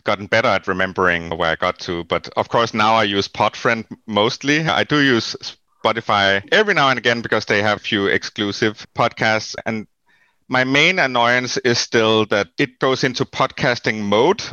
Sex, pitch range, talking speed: male, 100-130 Hz, 180 wpm